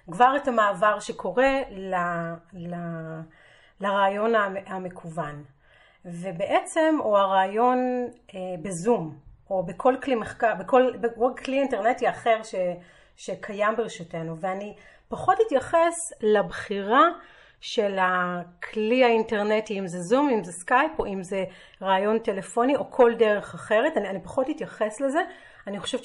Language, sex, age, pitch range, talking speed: Hebrew, female, 30-49, 195-260 Hz, 125 wpm